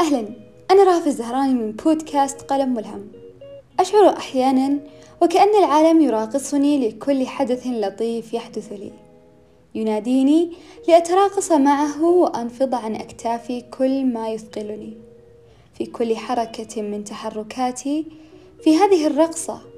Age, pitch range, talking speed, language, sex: 20-39, 215-280 Hz, 105 wpm, Arabic, female